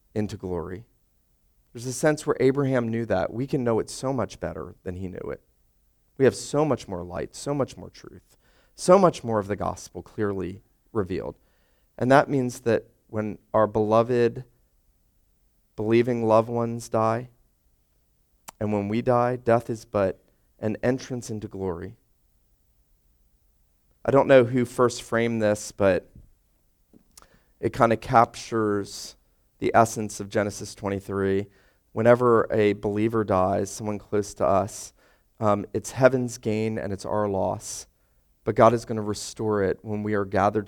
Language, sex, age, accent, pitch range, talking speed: English, male, 40-59, American, 95-115 Hz, 155 wpm